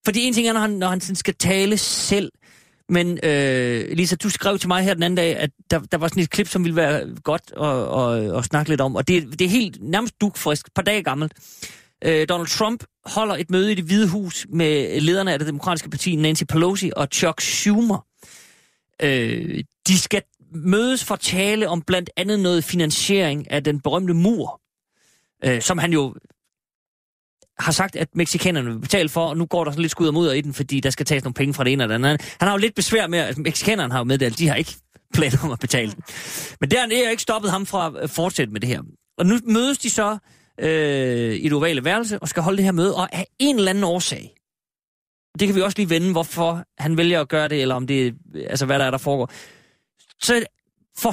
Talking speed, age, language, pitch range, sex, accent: 225 wpm, 30-49, Danish, 150-200 Hz, male, native